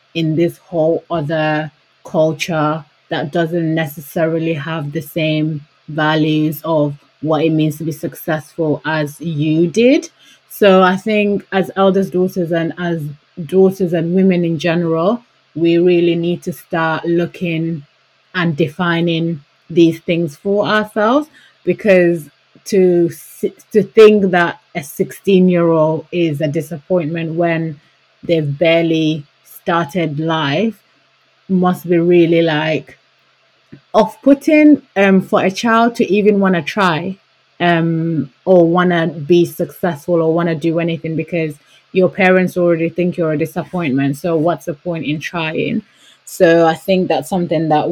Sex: female